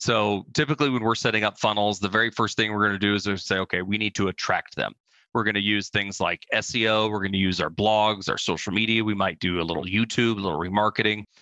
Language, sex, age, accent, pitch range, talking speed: English, male, 30-49, American, 100-110 Hz, 250 wpm